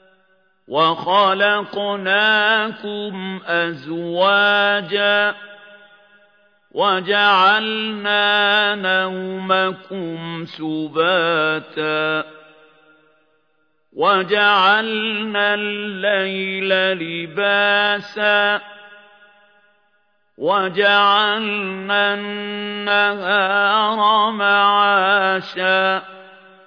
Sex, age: male, 50-69